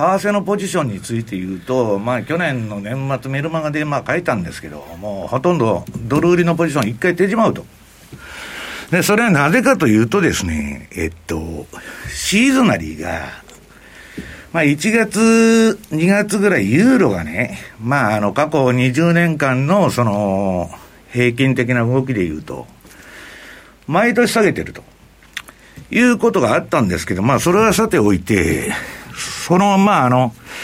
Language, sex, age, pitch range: Japanese, male, 60-79, 105-175 Hz